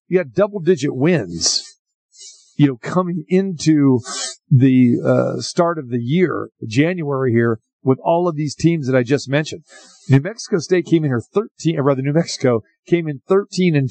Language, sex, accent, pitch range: English, male, American, 135-170 Hz